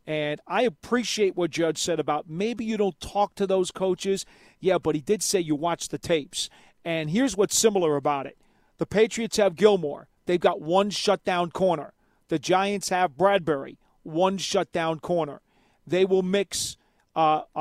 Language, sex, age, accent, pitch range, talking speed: English, male, 40-59, American, 170-205 Hz, 165 wpm